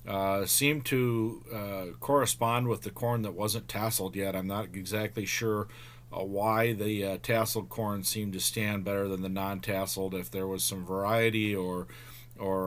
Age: 40-59